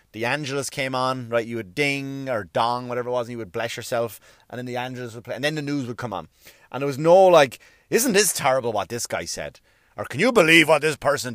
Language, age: English, 30-49